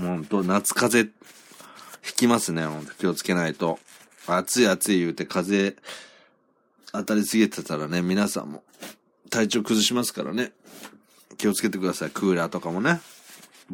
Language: Japanese